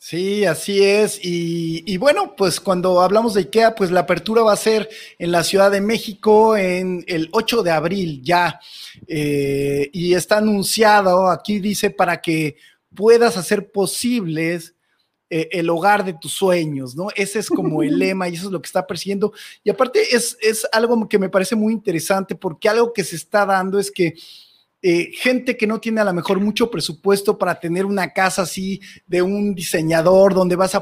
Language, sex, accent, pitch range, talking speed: Spanish, male, Mexican, 170-210 Hz, 190 wpm